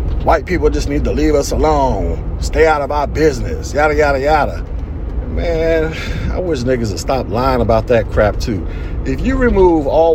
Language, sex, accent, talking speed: English, male, American, 185 wpm